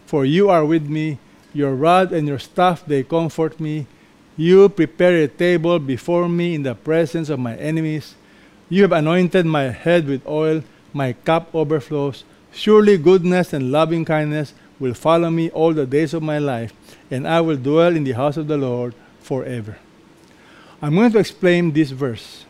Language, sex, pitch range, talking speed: English, male, 145-180 Hz, 175 wpm